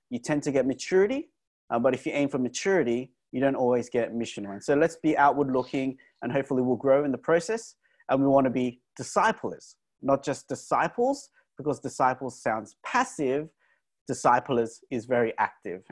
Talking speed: 175 wpm